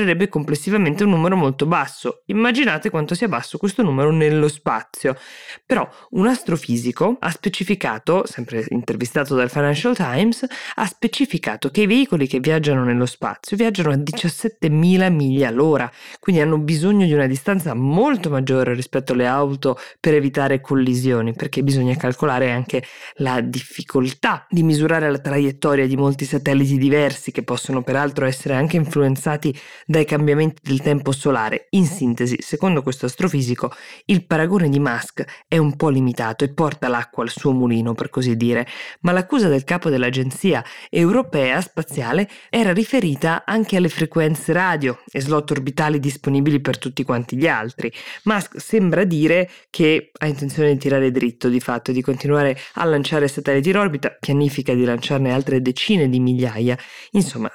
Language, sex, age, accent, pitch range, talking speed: Italian, female, 20-39, native, 130-170 Hz, 155 wpm